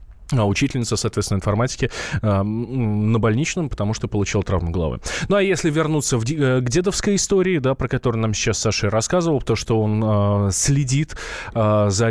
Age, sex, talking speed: 20-39, male, 150 wpm